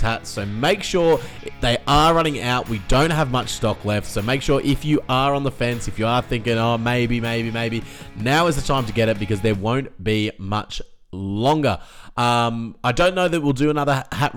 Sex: male